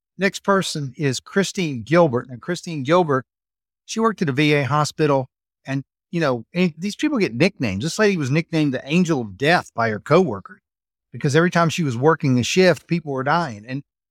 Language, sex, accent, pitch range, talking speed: English, male, American, 125-155 Hz, 185 wpm